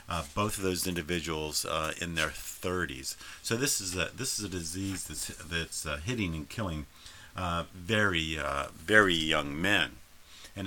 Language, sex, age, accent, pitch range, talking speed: English, male, 50-69, American, 80-100 Hz, 170 wpm